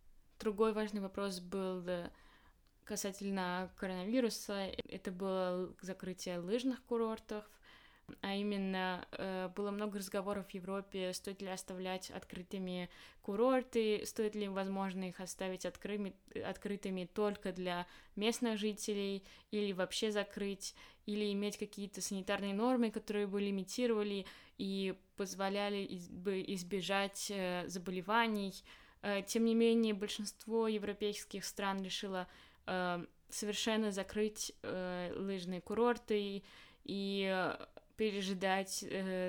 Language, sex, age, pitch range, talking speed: Russian, female, 20-39, 190-210 Hz, 95 wpm